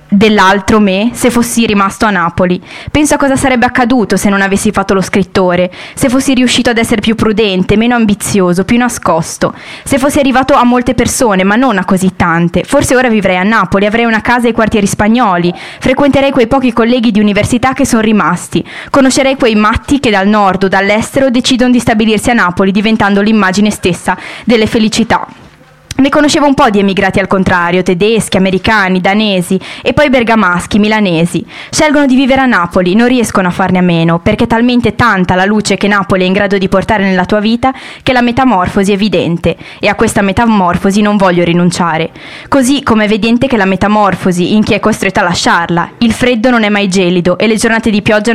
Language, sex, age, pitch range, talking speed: Italian, female, 20-39, 190-245 Hz, 195 wpm